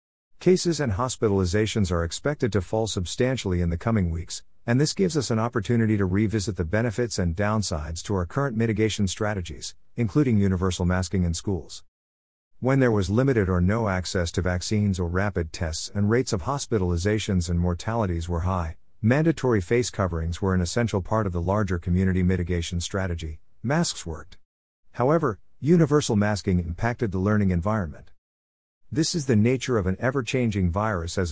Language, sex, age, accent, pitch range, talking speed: English, male, 50-69, American, 90-115 Hz, 165 wpm